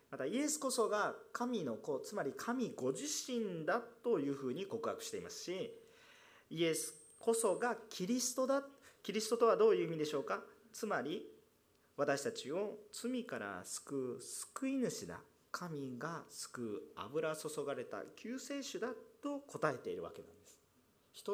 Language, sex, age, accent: Japanese, male, 40-59, native